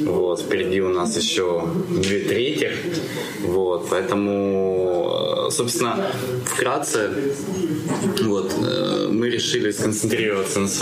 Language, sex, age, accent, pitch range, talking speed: Ukrainian, male, 20-39, native, 90-115 Hz, 85 wpm